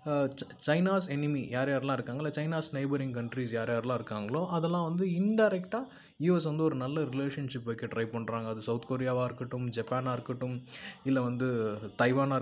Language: Tamil